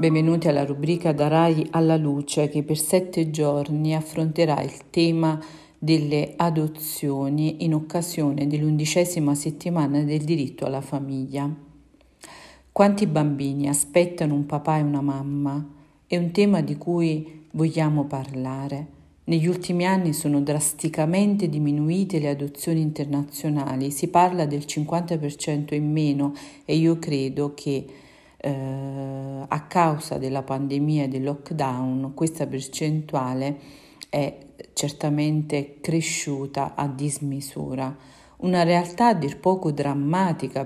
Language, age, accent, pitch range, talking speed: Italian, 50-69, native, 140-160 Hz, 115 wpm